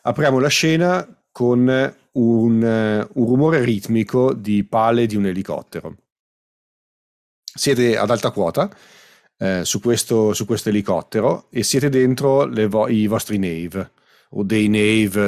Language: Italian